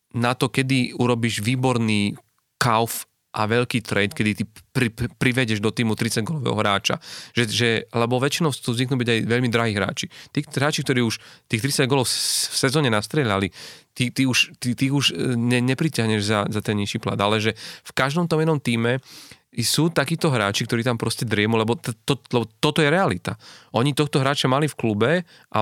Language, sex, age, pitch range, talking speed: Slovak, male, 30-49, 115-135 Hz, 180 wpm